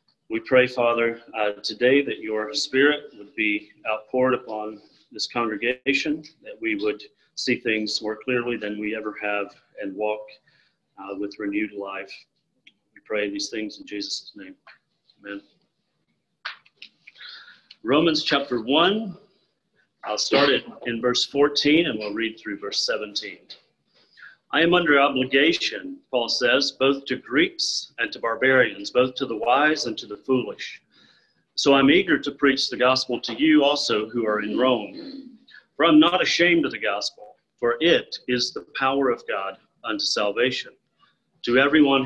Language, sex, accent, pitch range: English, male, American, 110-150 Hz